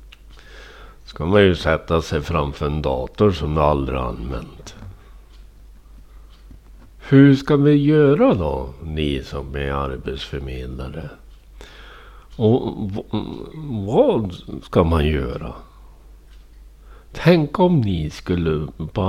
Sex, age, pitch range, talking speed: male, 60-79, 70-95 Hz, 105 wpm